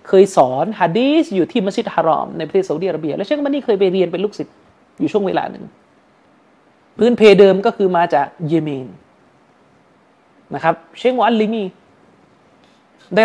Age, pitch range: 30-49, 175-225 Hz